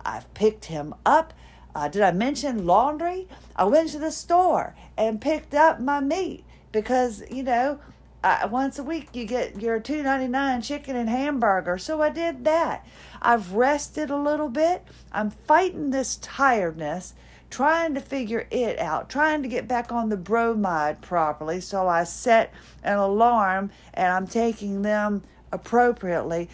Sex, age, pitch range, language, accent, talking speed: female, 50-69, 190-275 Hz, English, American, 155 wpm